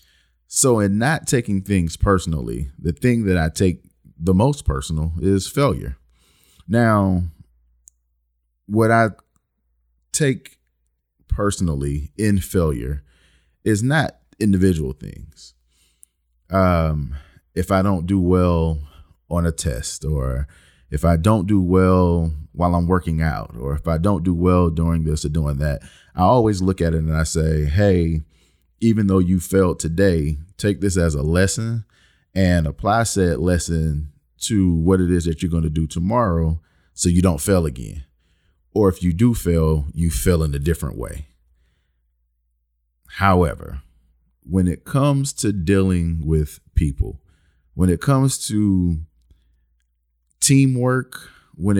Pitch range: 75-95 Hz